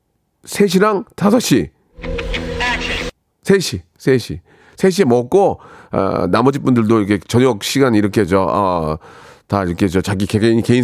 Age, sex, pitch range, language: 40-59, male, 110-165 Hz, Korean